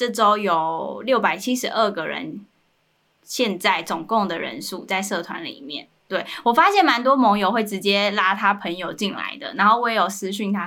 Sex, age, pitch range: female, 10-29, 185-230 Hz